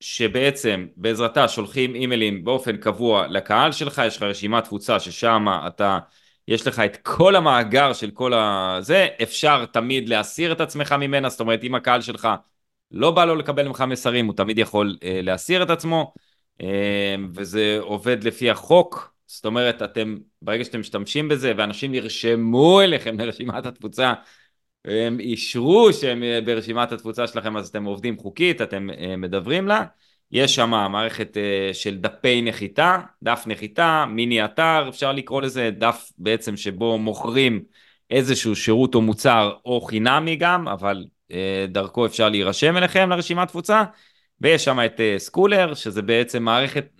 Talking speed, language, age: 145 wpm, Hebrew, 20-39